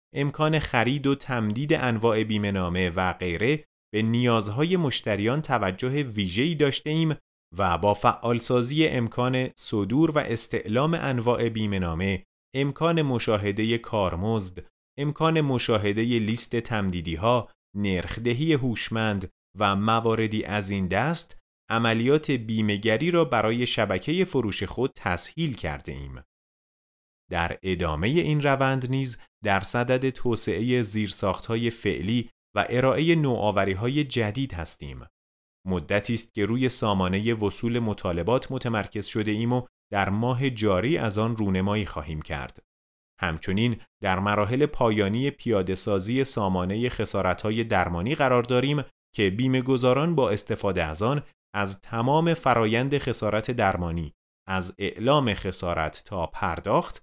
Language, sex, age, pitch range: Persian, male, 30-49, 95-130 Hz